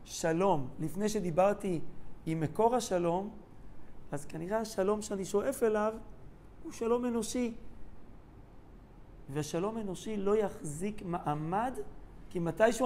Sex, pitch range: male, 155-205 Hz